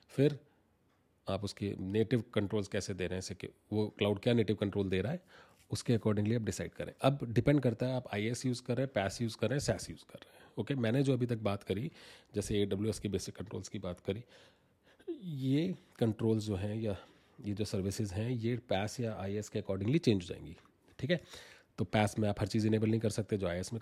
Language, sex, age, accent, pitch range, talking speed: Hindi, male, 30-49, native, 100-125 Hz, 235 wpm